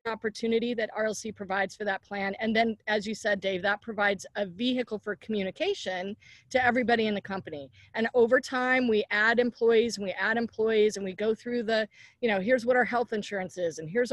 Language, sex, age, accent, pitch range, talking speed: English, female, 40-59, American, 195-250 Hz, 210 wpm